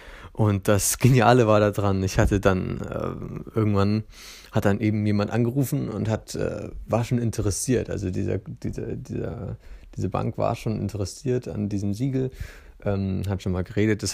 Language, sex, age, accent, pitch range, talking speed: German, male, 30-49, German, 95-115 Hz, 170 wpm